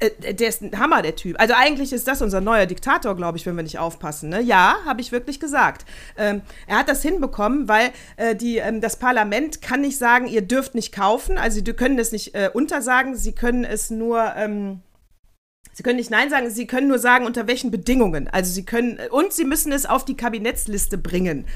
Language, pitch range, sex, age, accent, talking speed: German, 195-255 Hz, female, 40-59, German, 215 wpm